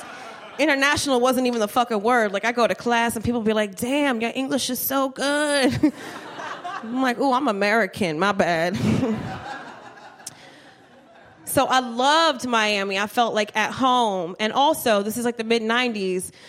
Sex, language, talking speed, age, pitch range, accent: female, English, 165 wpm, 20-39, 215-265 Hz, American